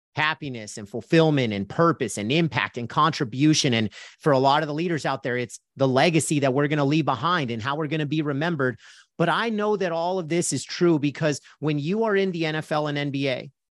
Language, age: English, 40-59